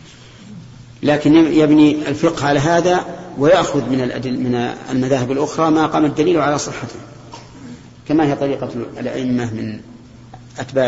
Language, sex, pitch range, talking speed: Arabic, male, 120-145 Hz, 115 wpm